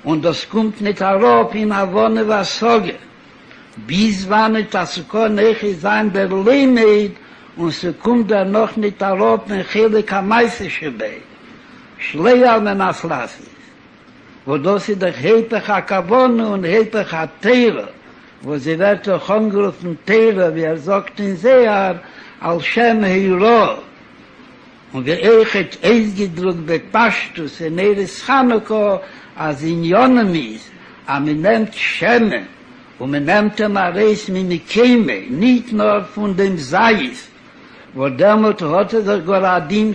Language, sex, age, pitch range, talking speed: Hebrew, male, 60-79, 180-225 Hz, 140 wpm